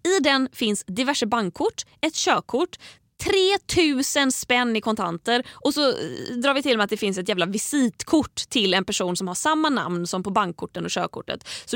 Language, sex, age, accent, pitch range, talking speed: Swedish, female, 20-39, native, 190-270 Hz, 185 wpm